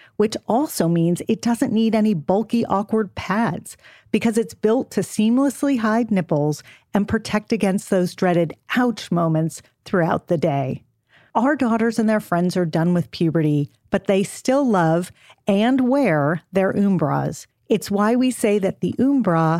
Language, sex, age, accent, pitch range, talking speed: English, female, 40-59, American, 165-225 Hz, 155 wpm